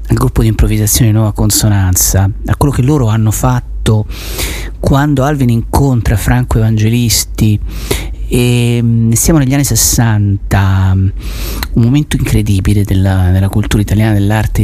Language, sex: Italian, male